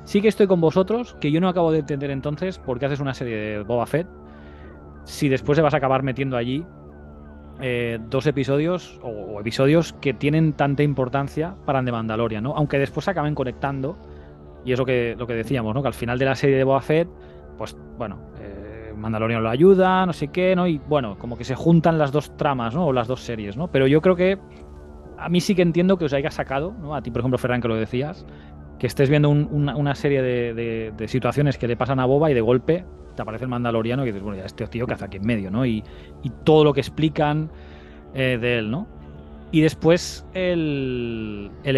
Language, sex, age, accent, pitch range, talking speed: Spanish, male, 20-39, Spanish, 110-145 Hz, 230 wpm